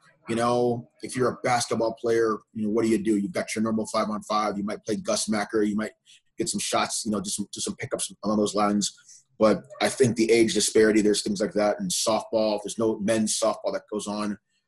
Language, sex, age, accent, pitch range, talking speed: English, male, 30-49, American, 105-120 Hz, 240 wpm